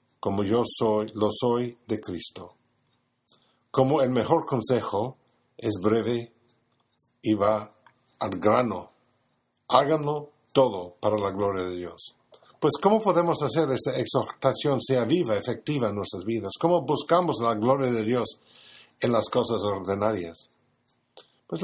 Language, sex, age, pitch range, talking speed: Spanish, male, 50-69, 110-140 Hz, 130 wpm